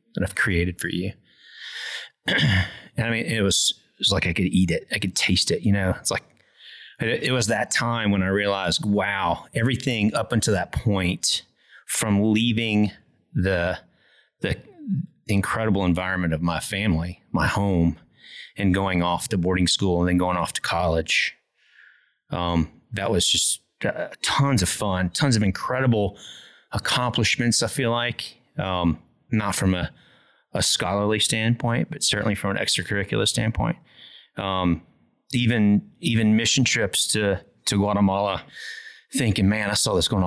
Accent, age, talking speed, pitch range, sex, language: American, 30-49, 155 wpm, 90-115 Hz, male, English